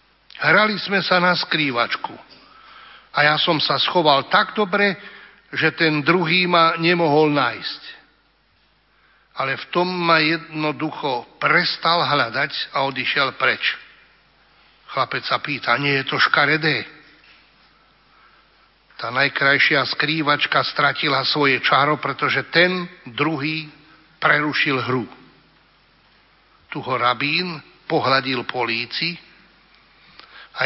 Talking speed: 100 wpm